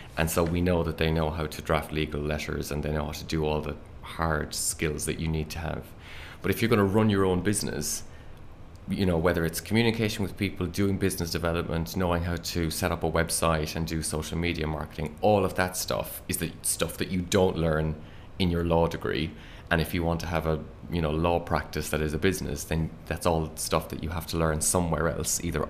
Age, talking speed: 20-39, 235 wpm